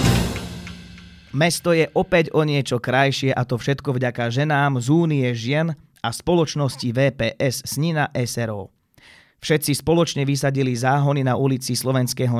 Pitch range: 120-145 Hz